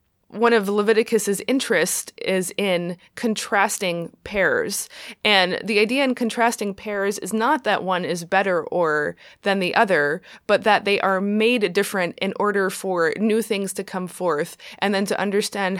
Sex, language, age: female, English, 20-39